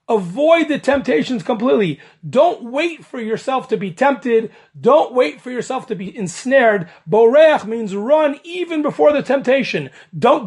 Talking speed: 150 wpm